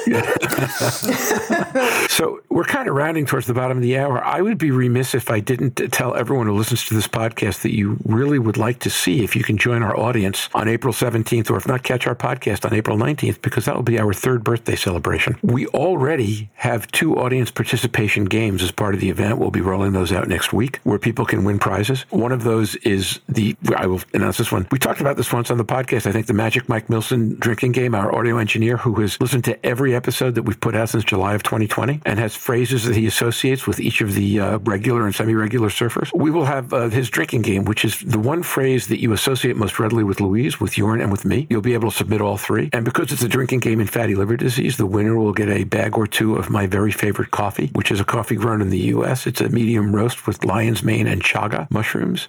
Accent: American